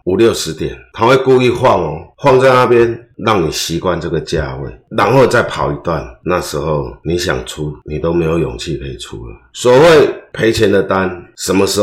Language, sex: Chinese, male